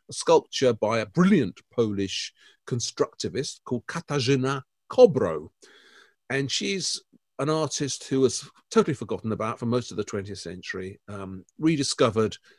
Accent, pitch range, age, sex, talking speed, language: British, 105-145 Hz, 50-69, male, 125 wpm, English